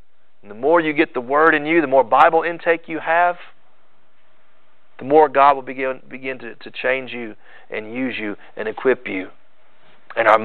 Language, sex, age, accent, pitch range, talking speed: English, male, 40-59, American, 135-205 Hz, 190 wpm